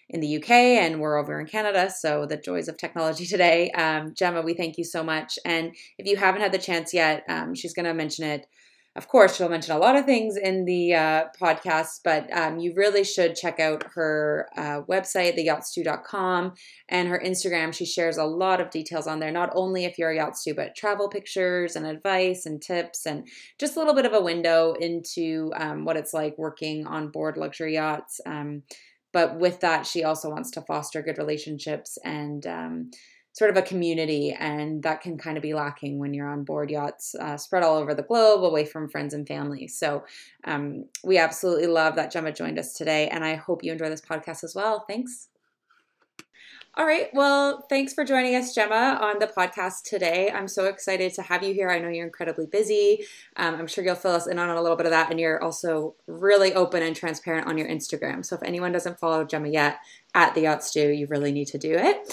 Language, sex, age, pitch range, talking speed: English, female, 20-39, 155-195 Hz, 215 wpm